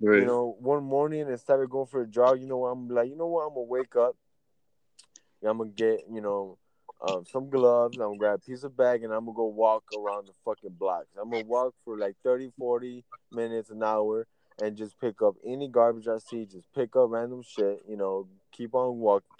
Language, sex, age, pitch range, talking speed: English, male, 20-39, 105-130 Hz, 230 wpm